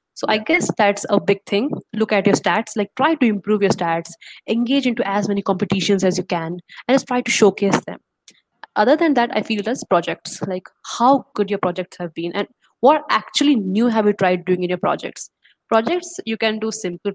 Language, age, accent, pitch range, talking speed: English, 20-39, Indian, 185-225 Hz, 215 wpm